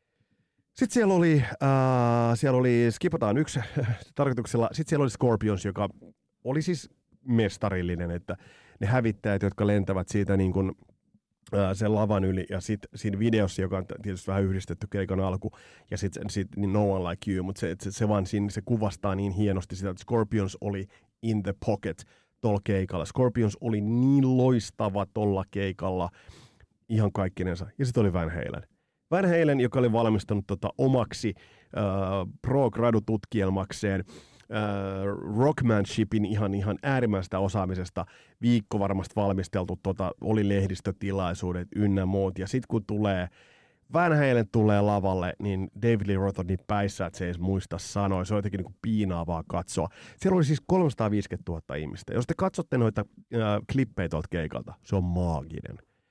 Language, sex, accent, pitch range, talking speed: Finnish, male, native, 95-115 Hz, 150 wpm